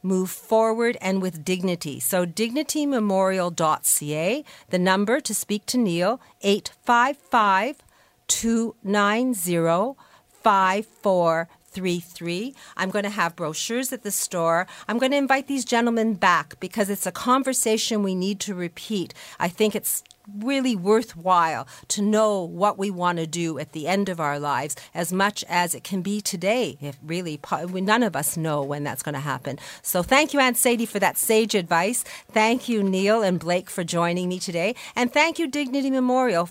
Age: 50-69